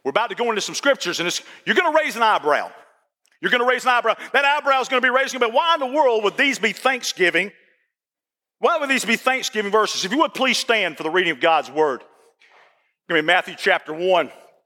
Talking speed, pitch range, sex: 240 wpm, 185-265 Hz, male